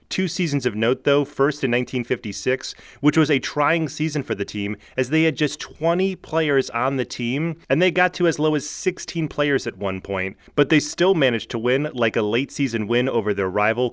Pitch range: 120-155 Hz